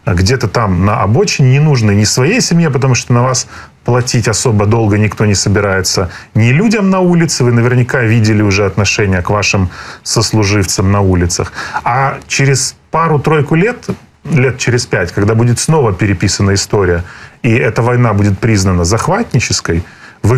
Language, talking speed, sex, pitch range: Ukrainian, 155 wpm, male, 105-130 Hz